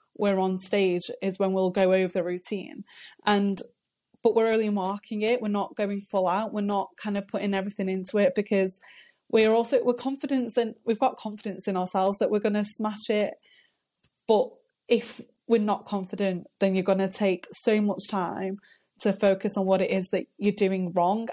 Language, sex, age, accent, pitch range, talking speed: English, female, 20-39, British, 195-235 Hz, 195 wpm